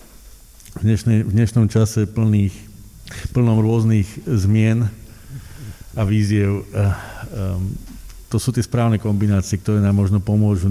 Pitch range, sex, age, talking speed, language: 90-105 Hz, male, 50-69, 100 wpm, Slovak